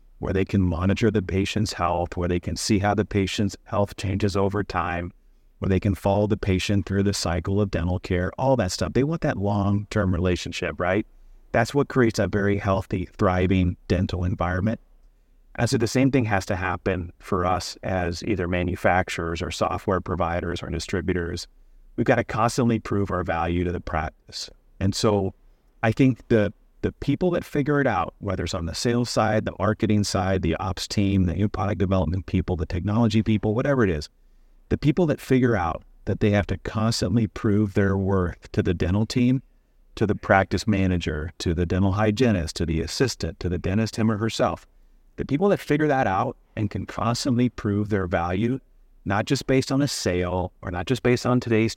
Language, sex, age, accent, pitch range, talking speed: English, male, 30-49, American, 90-110 Hz, 195 wpm